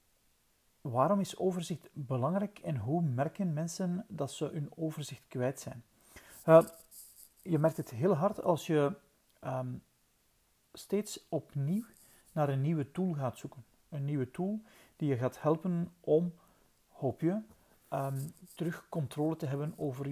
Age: 40-59